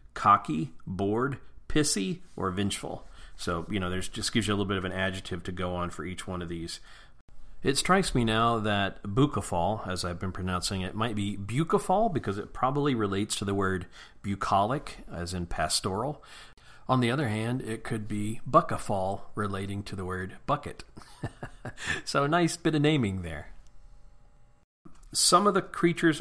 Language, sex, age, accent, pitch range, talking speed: English, male, 40-59, American, 95-120 Hz, 170 wpm